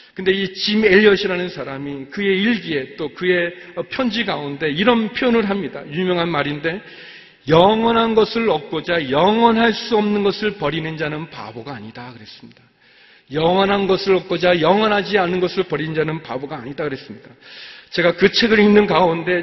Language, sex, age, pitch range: Korean, male, 40-59, 185-240 Hz